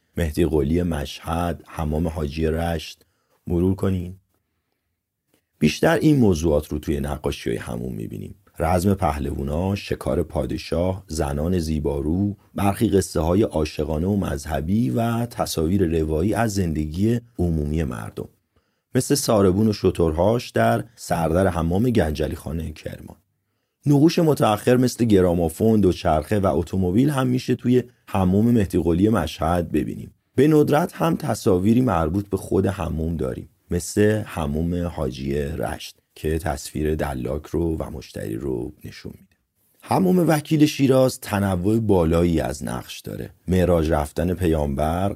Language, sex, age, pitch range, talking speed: Persian, male, 30-49, 80-105 Hz, 125 wpm